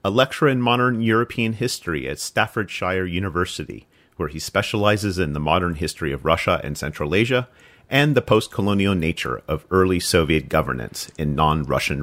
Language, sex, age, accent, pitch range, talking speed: English, male, 40-59, American, 80-105 Hz, 155 wpm